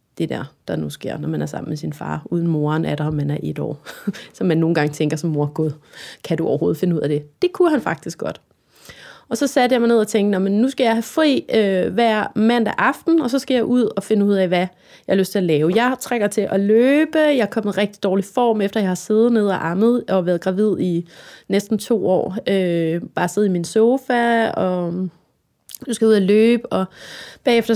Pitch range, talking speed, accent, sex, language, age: 185-230 Hz, 245 wpm, native, female, Danish, 30-49